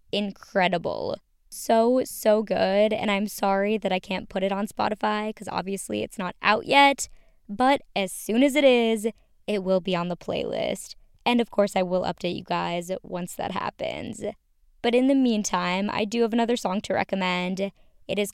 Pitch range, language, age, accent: 185-230 Hz, English, 20-39, American